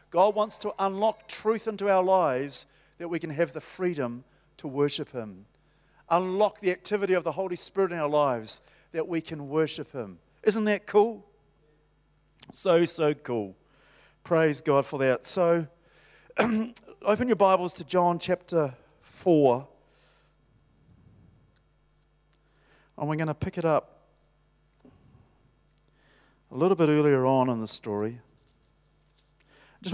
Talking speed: 130 wpm